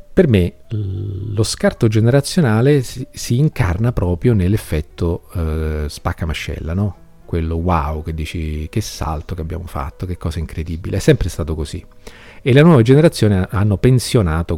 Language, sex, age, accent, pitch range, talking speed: Italian, male, 40-59, native, 80-105 Hz, 150 wpm